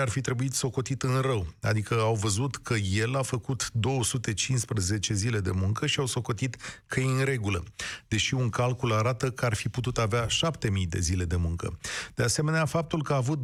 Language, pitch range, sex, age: Romanian, 115-150 Hz, male, 40-59